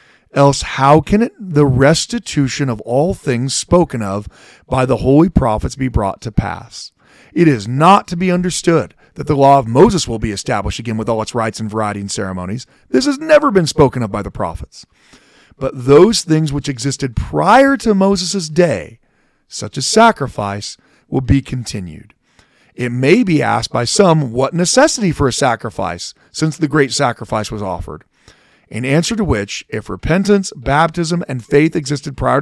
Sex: male